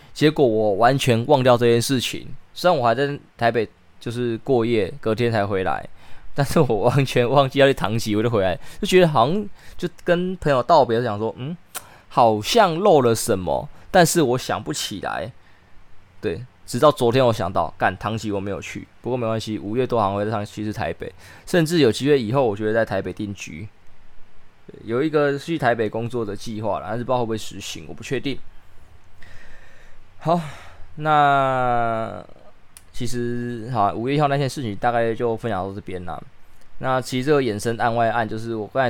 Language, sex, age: Chinese, male, 20-39